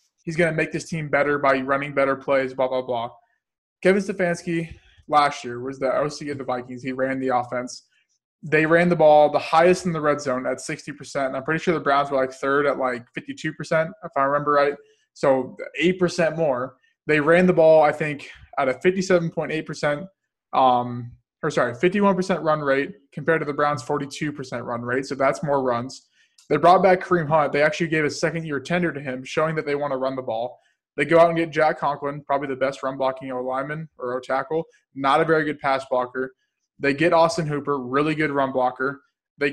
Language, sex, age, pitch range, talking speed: English, male, 20-39, 135-165 Hz, 205 wpm